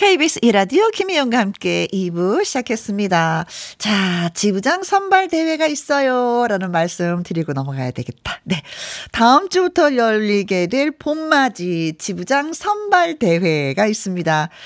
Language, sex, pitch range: Korean, female, 175-280 Hz